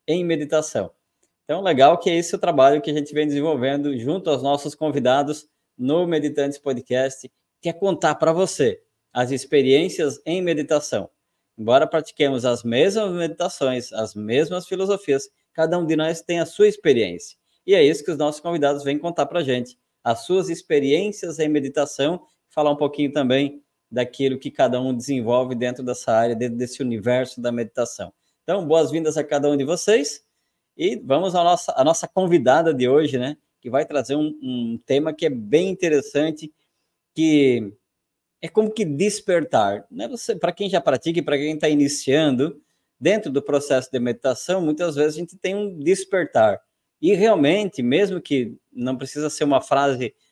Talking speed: 170 wpm